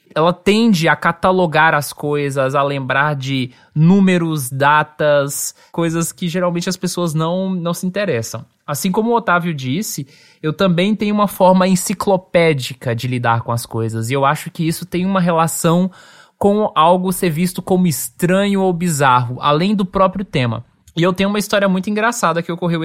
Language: Portuguese